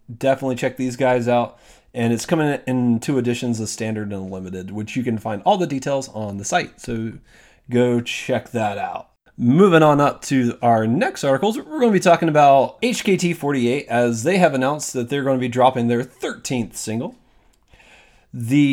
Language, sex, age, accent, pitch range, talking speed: English, male, 30-49, American, 120-155 Hz, 185 wpm